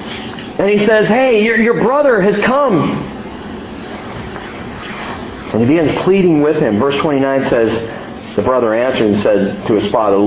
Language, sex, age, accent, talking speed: English, male, 40-59, American, 150 wpm